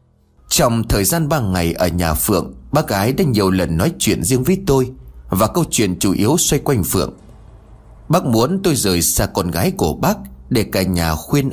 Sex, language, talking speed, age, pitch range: male, Vietnamese, 205 wpm, 30-49, 85-125 Hz